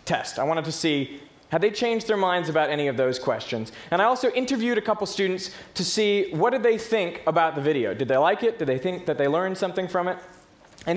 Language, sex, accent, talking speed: English, male, American, 245 wpm